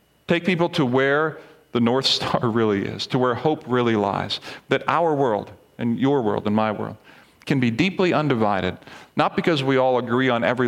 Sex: male